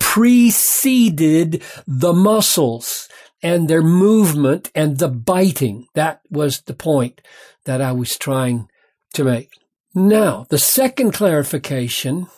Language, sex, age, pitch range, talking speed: English, male, 60-79, 140-200 Hz, 110 wpm